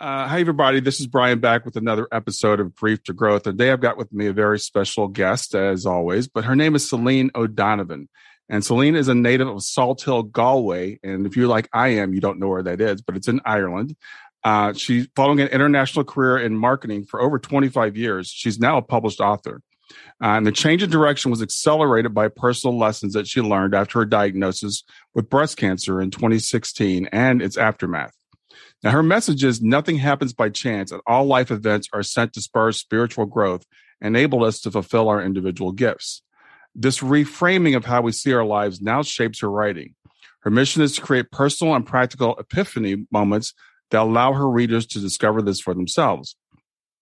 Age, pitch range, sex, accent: 40-59, 105-135 Hz, male, American